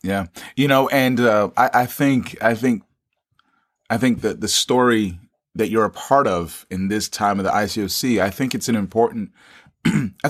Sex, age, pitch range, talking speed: male, 30-49, 95-125 Hz, 185 wpm